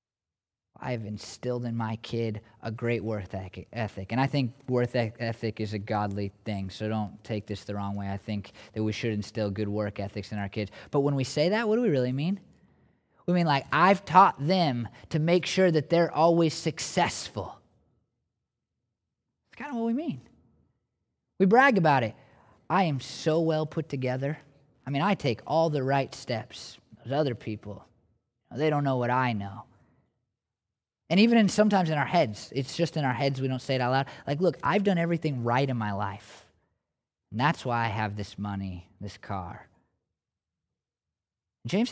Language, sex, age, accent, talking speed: English, male, 20-39, American, 185 wpm